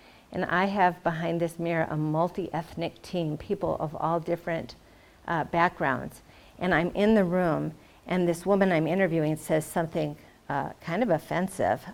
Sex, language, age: female, English, 50-69